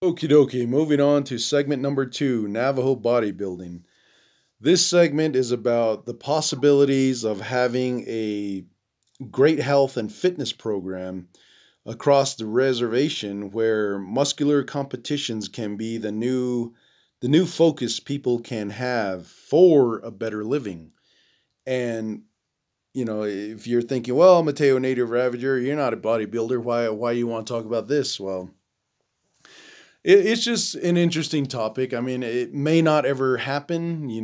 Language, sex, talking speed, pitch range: English, male, 140 wpm, 115-145 Hz